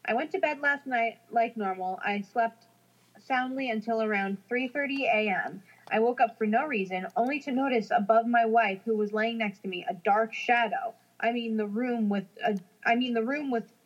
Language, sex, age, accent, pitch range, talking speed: English, female, 20-39, American, 205-245 Hz, 210 wpm